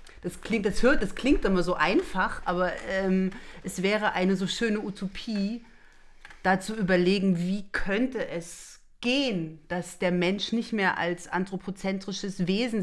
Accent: German